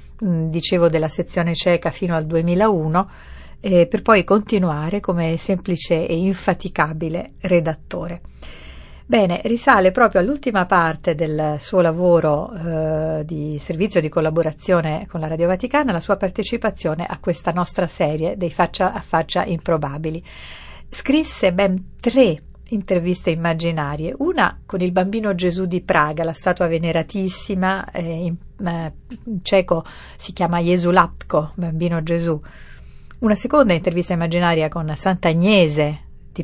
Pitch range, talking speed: 160-195 Hz, 130 wpm